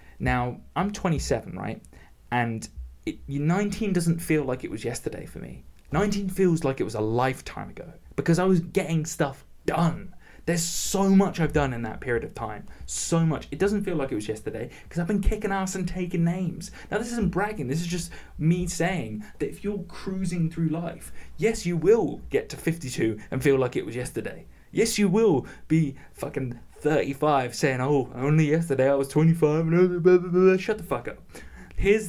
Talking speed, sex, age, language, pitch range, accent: 185 wpm, male, 20-39, English, 125-180 Hz, British